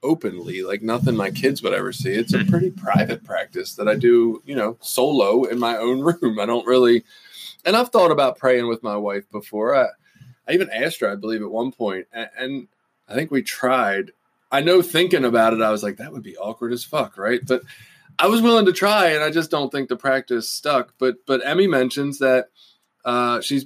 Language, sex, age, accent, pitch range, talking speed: English, male, 20-39, American, 115-150 Hz, 220 wpm